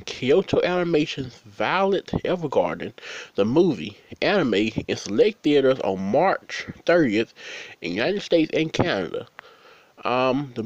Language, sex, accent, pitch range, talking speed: English, male, American, 125-175 Hz, 120 wpm